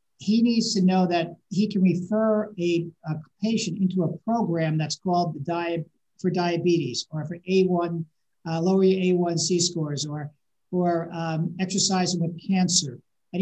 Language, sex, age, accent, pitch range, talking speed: English, male, 50-69, American, 170-195 Hz, 155 wpm